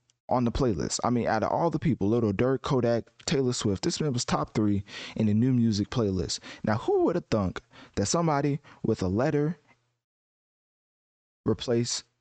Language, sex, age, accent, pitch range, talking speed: English, male, 20-39, American, 110-125 Hz, 175 wpm